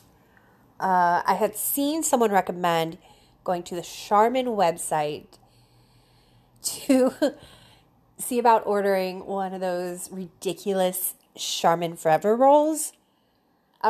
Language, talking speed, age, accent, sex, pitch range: English, 100 wpm, 30-49, American, female, 175-245 Hz